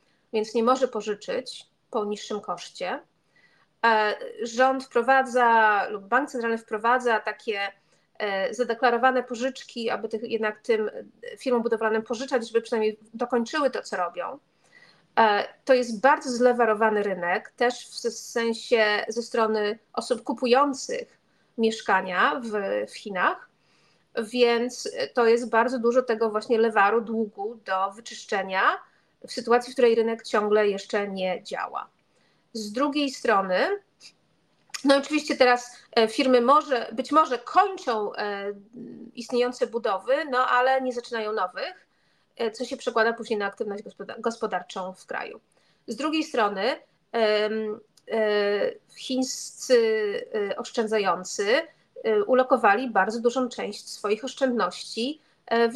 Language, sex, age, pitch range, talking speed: Polish, female, 30-49, 220-260 Hz, 110 wpm